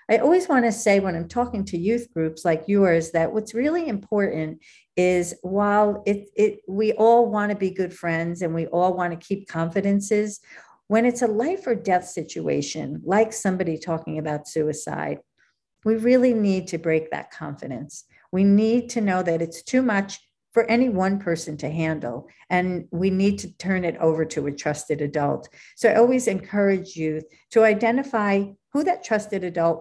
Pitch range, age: 165-215 Hz, 50-69